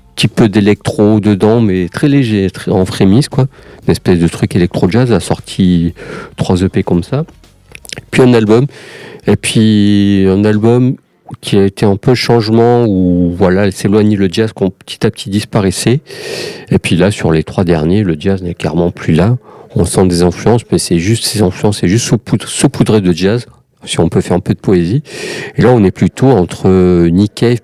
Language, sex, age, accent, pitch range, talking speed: French, male, 50-69, French, 90-115 Hz, 190 wpm